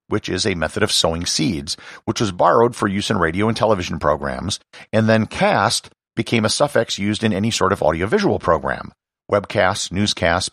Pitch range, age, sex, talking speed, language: 95-120 Hz, 50-69, male, 180 wpm, English